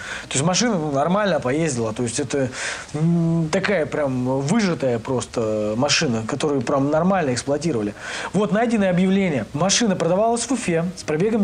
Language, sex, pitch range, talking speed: Russian, male, 150-205 Hz, 135 wpm